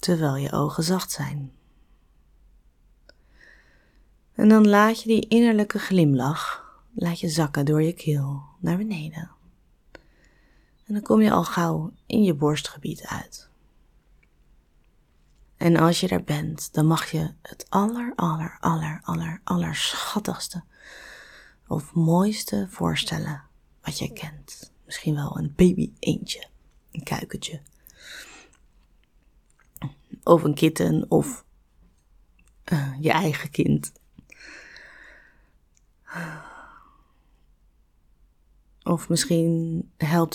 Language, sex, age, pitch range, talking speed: Dutch, female, 30-49, 130-180 Hz, 105 wpm